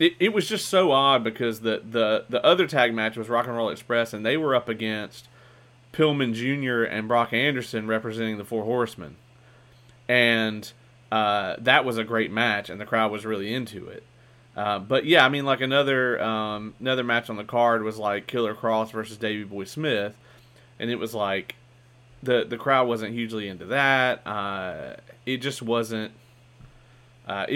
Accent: American